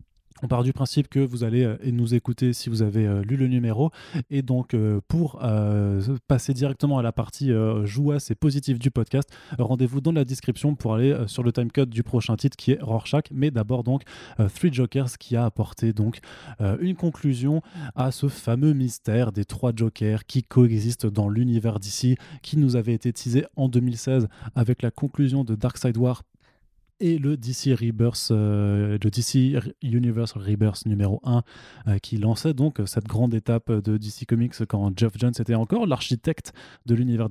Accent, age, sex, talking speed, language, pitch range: French, 20-39, male, 190 wpm, French, 115-135 Hz